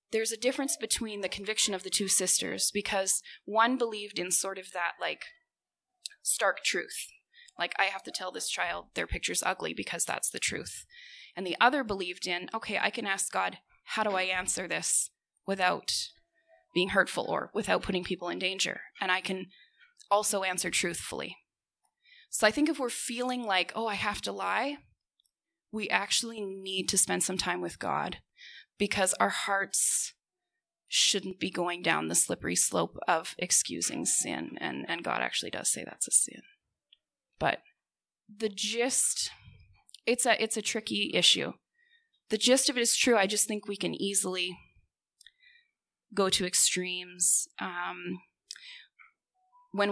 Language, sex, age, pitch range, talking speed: English, female, 20-39, 190-255 Hz, 160 wpm